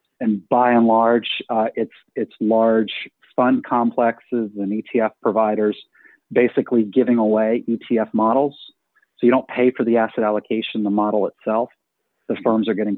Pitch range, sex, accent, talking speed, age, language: 105-120 Hz, male, American, 155 wpm, 40-59, English